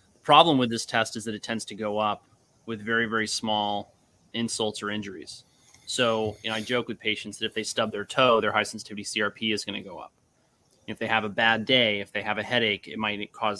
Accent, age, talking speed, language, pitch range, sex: American, 30-49, 235 wpm, English, 105-115 Hz, male